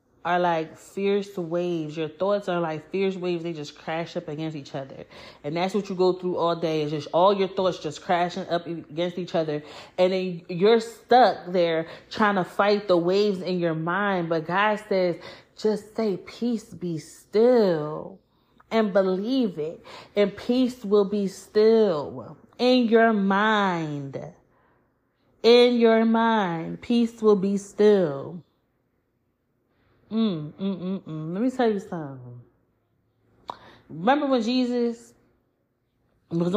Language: English